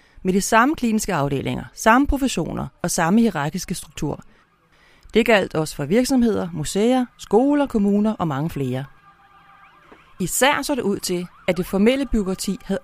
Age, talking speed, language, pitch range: 30-49, 150 wpm, Danish, 170-225 Hz